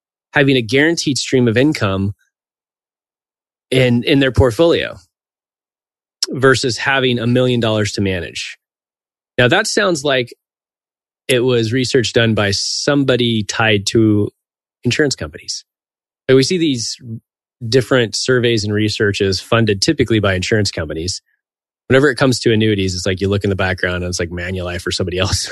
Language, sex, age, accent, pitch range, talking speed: English, male, 20-39, American, 100-135 Hz, 145 wpm